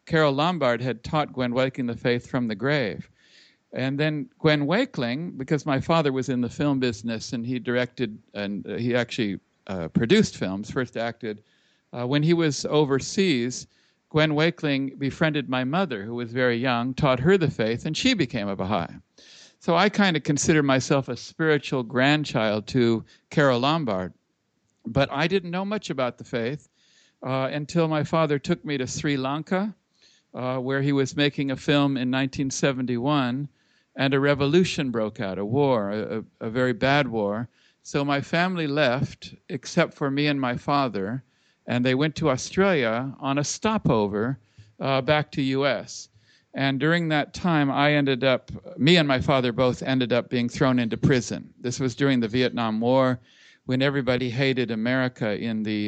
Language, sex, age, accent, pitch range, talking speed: English, male, 60-79, American, 120-150 Hz, 170 wpm